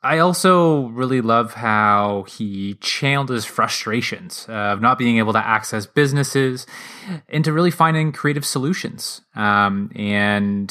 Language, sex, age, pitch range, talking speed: English, male, 20-39, 100-130 Hz, 130 wpm